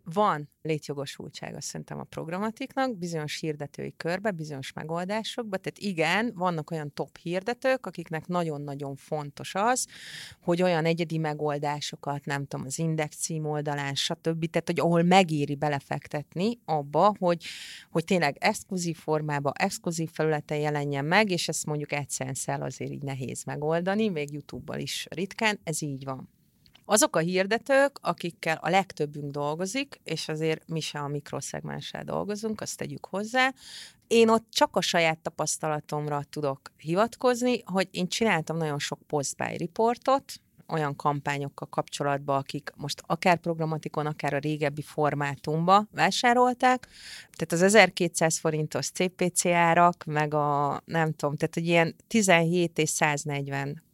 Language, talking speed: Hungarian, 135 wpm